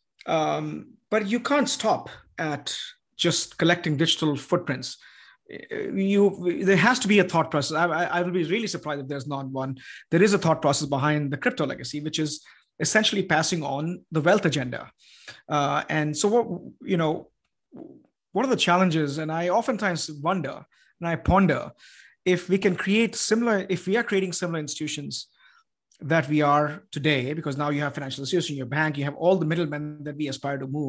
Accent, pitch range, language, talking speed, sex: Indian, 150-185 Hz, English, 185 wpm, male